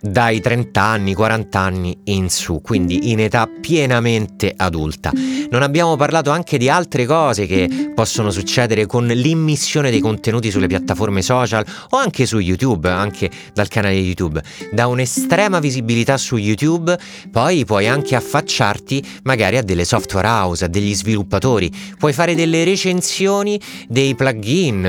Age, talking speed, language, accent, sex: 30-49, 145 wpm, Italian, native, male